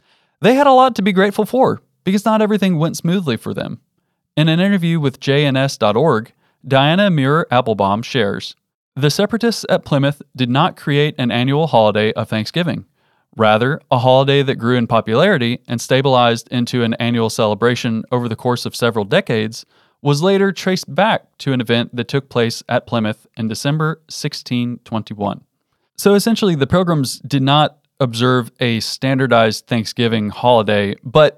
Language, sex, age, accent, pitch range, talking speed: English, male, 30-49, American, 115-150 Hz, 155 wpm